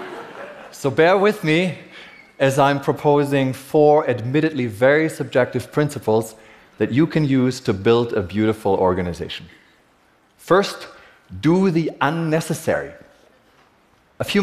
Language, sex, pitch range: Korean, male, 110-150 Hz